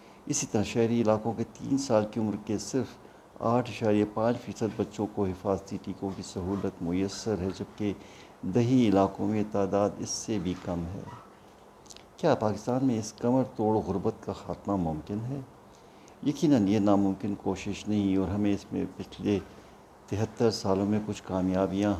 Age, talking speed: 60-79, 160 wpm